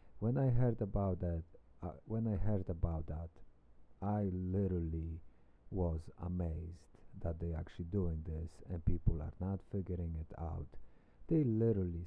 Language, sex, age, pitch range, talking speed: English, male, 50-69, 80-100 Hz, 145 wpm